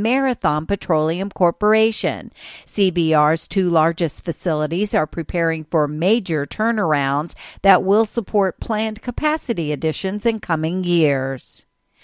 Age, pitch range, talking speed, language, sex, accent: 50-69, 165-215 Hz, 105 wpm, English, female, American